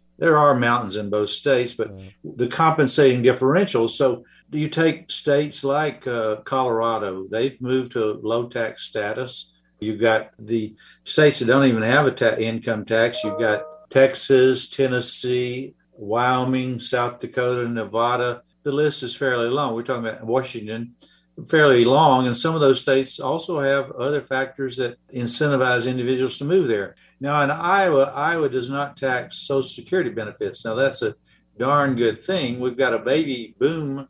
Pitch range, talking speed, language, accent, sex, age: 115-140 Hz, 160 wpm, English, American, male, 50-69